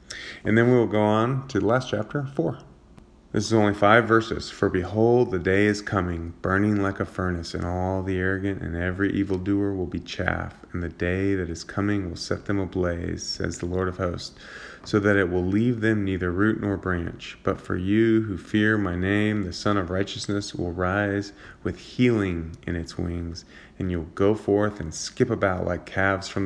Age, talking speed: 30-49, 205 wpm